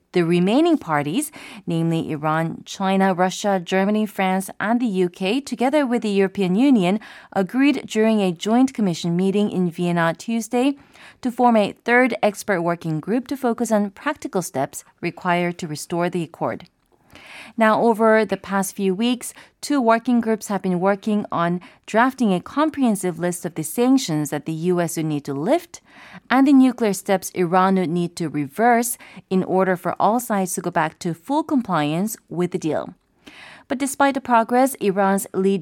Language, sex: Korean, female